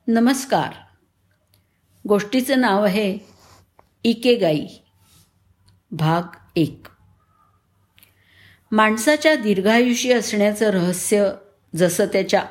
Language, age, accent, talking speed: Marathi, 50-69, native, 65 wpm